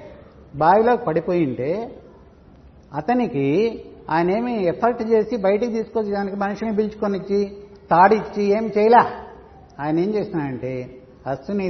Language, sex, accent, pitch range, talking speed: Telugu, male, native, 145-200 Hz, 85 wpm